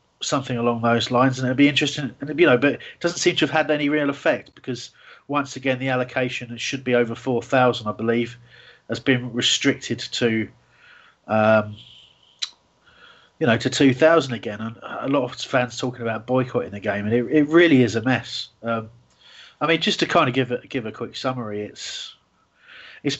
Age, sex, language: 30-49, male, English